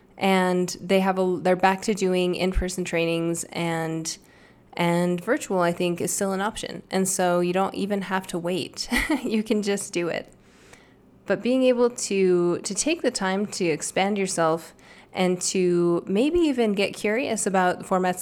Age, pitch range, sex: 10-29, 175-215 Hz, female